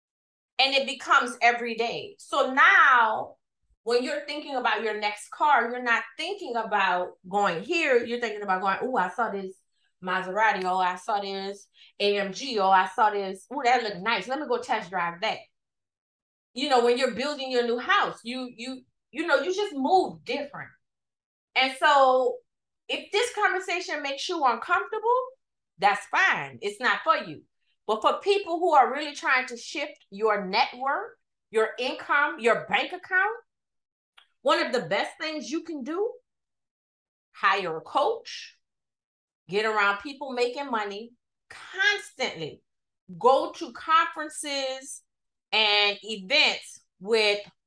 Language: English